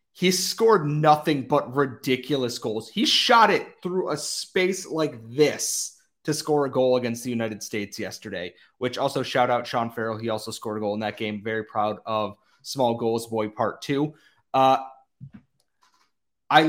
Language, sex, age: English, male, 30-49